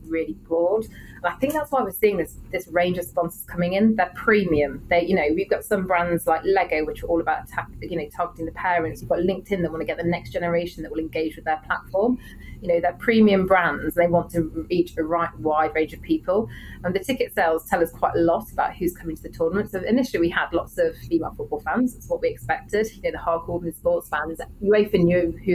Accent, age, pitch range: British, 30-49, 170-205 Hz